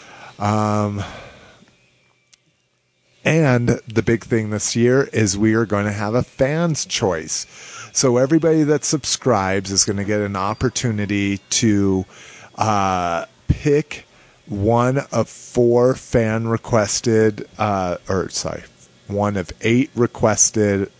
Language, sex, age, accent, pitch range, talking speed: English, male, 30-49, American, 95-120 Hz, 115 wpm